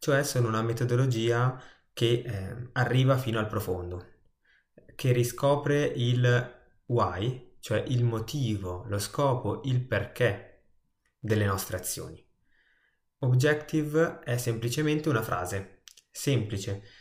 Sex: male